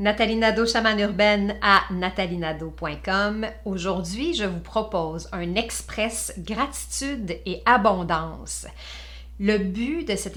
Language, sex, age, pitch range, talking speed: French, female, 50-69, 175-220 Hz, 110 wpm